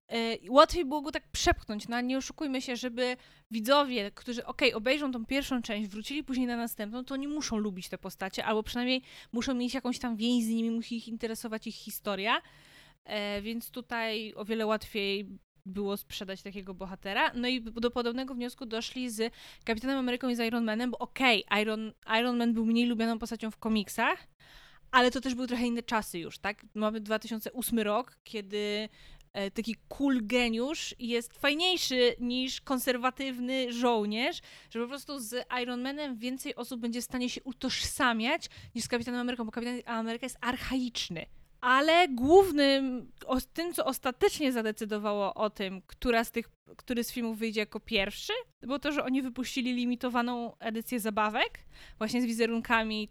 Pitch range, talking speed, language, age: 220-255 Hz, 170 wpm, Polish, 20-39